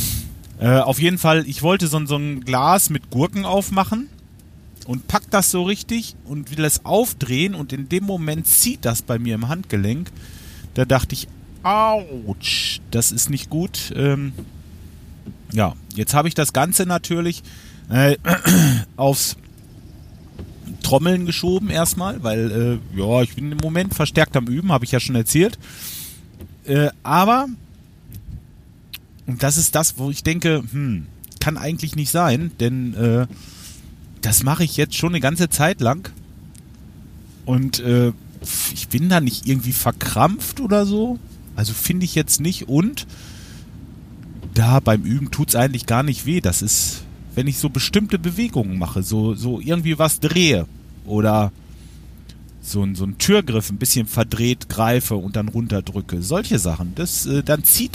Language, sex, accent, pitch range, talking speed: German, male, German, 105-160 Hz, 155 wpm